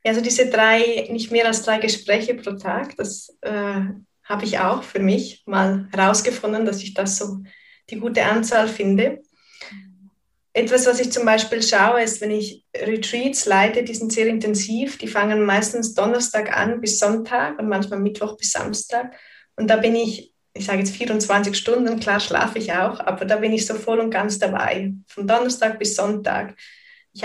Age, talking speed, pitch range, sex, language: 20-39, 180 wpm, 205-235 Hz, female, German